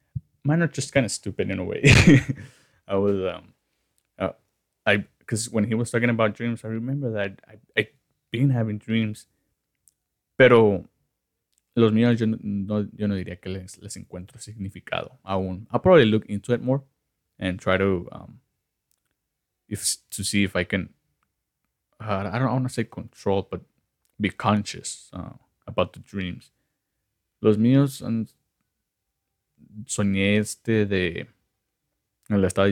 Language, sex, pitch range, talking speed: English, male, 100-120 Hz, 150 wpm